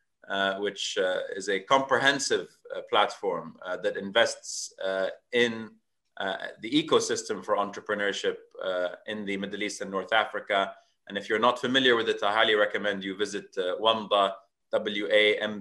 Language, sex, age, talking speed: English, male, 30-49, 165 wpm